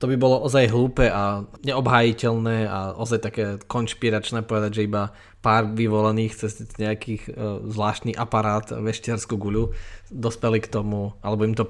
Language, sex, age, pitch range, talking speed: Slovak, male, 20-39, 105-130 Hz, 145 wpm